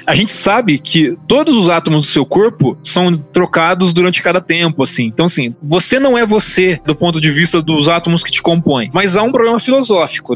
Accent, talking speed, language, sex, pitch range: Brazilian, 210 wpm, Portuguese, male, 150-195 Hz